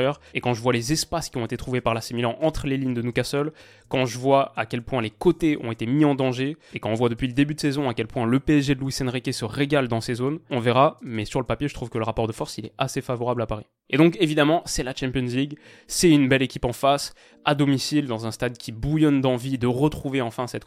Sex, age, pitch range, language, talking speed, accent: male, 20-39, 120-145 Hz, French, 280 wpm, French